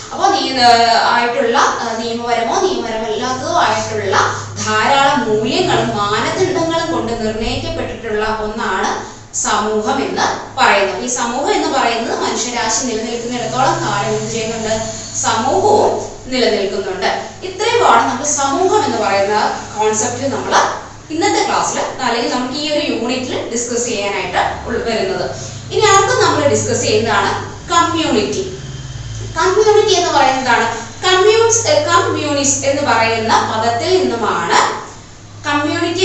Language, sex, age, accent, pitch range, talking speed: Malayalam, female, 20-39, native, 220-335 Hz, 65 wpm